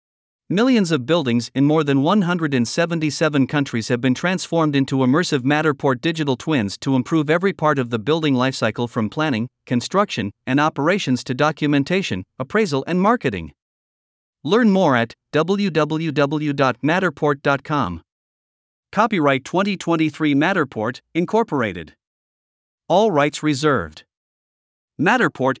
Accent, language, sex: American, English, male